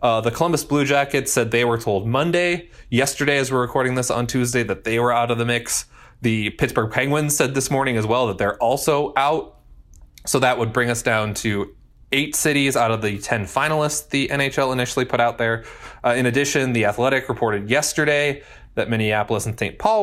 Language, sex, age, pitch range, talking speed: English, male, 20-39, 115-145 Hz, 205 wpm